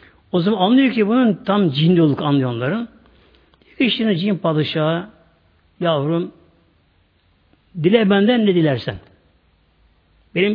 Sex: male